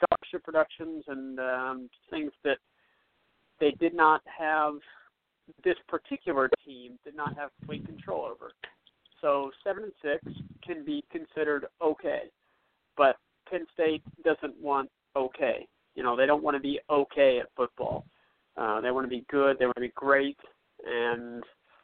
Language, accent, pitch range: English, American, 130-155 Hz